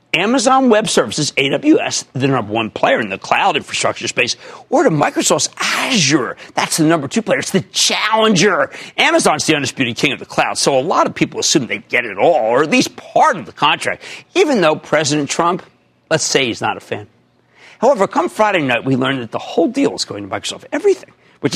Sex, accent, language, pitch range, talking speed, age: male, American, English, 135-220 Hz, 210 wpm, 50-69